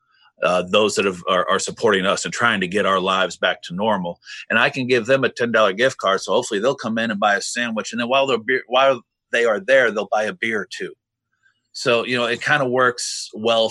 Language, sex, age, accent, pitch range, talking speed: English, male, 30-49, American, 95-120 Hz, 240 wpm